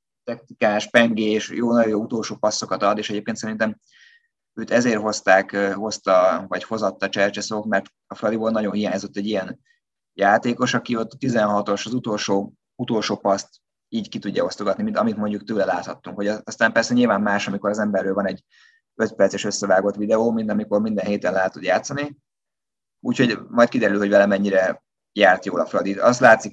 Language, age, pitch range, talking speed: Hungarian, 20-39, 100-110 Hz, 165 wpm